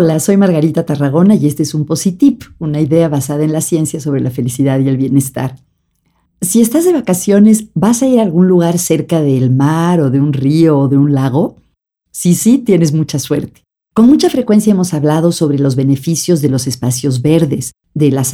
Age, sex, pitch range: 50-69, female, 145-180 Hz